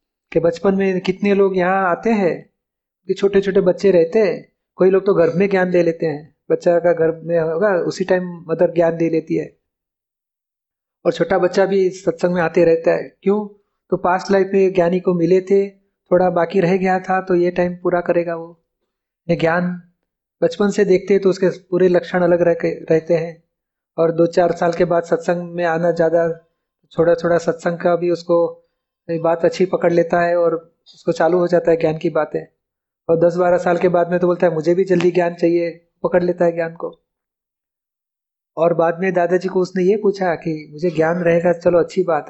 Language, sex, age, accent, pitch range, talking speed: Hindi, male, 30-49, native, 170-185 Hz, 195 wpm